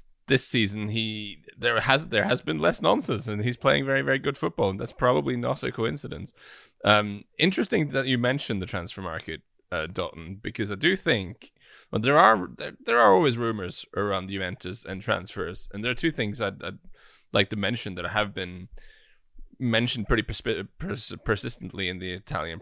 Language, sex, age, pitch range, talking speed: English, male, 10-29, 95-120 Hz, 190 wpm